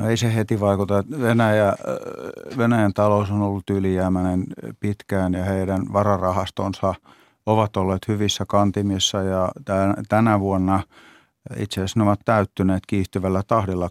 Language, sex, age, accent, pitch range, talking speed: Finnish, male, 50-69, native, 95-110 Hz, 125 wpm